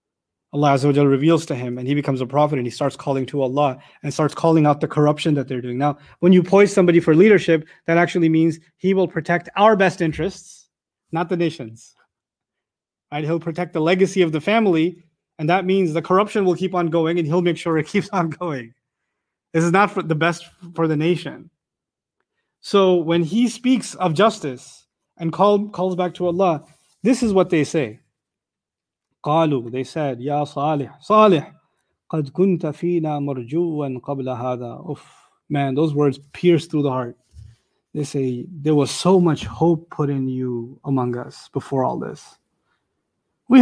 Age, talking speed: 30-49, 180 wpm